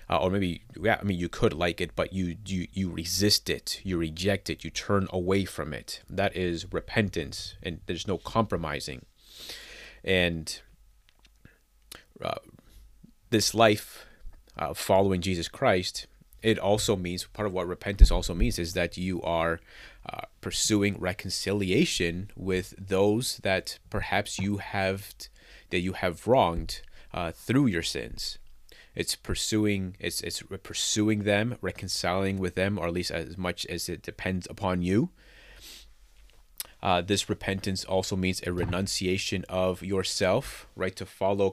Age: 30-49